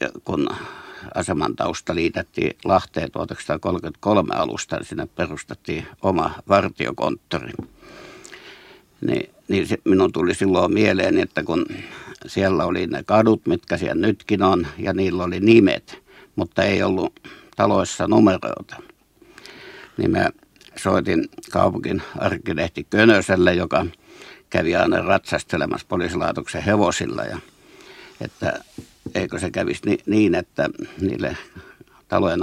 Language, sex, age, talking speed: Finnish, male, 60-79, 105 wpm